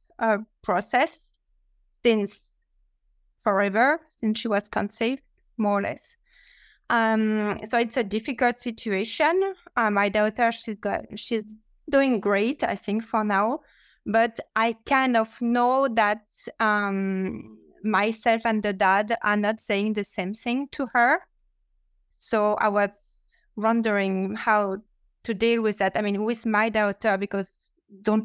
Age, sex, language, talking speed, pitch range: 20-39, female, English, 135 wpm, 200-230 Hz